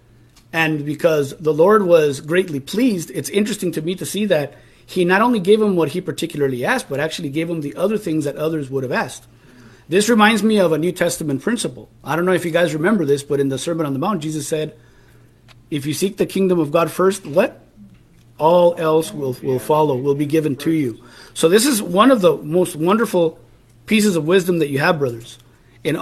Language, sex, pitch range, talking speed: English, male, 145-190 Hz, 220 wpm